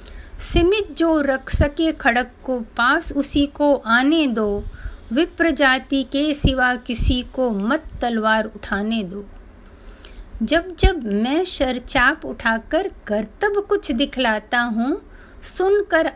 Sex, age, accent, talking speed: female, 50-69, native, 115 wpm